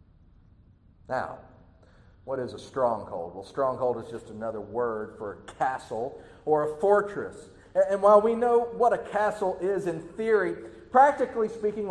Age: 40-59